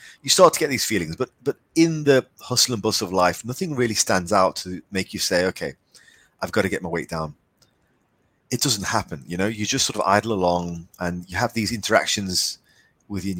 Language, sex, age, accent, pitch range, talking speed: English, male, 30-49, British, 90-110 Hz, 215 wpm